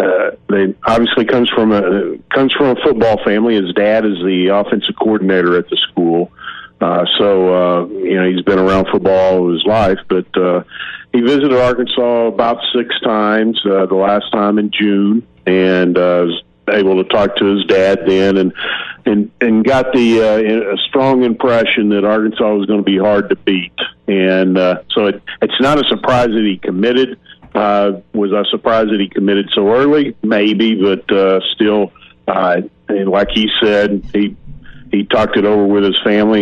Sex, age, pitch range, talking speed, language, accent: male, 50-69, 95-110 Hz, 180 wpm, English, American